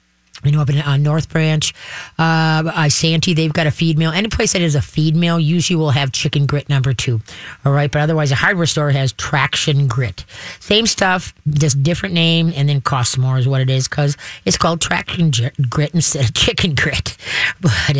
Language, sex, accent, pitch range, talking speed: English, female, American, 140-170 Hz, 205 wpm